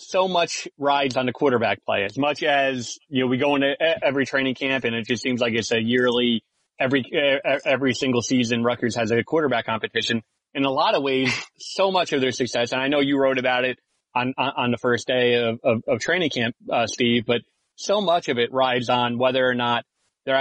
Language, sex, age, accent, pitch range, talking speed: English, male, 30-49, American, 120-135 Hz, 220 wpm